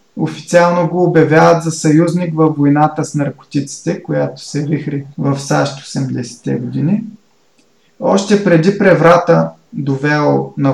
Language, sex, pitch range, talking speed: Bulgarian, male, 145-175 Hz, 115 wpm